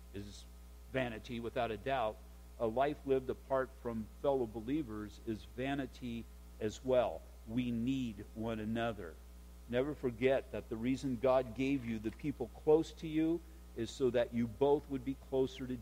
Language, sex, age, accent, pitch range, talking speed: English, male, 50-69, American, 100-135 Hz, 160 wpm